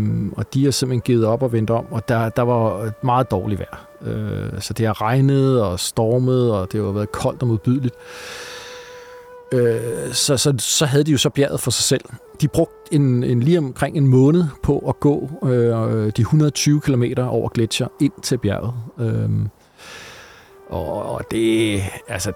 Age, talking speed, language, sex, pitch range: 40-59, 175 wpm, Danish, male, 110-135 Hz